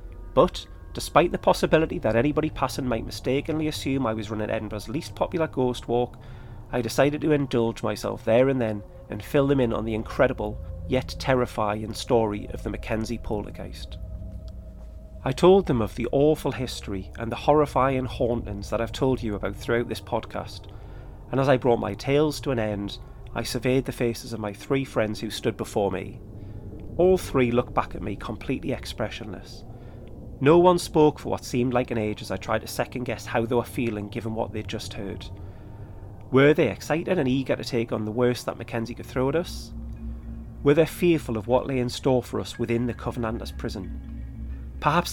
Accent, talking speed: British, 190 wpm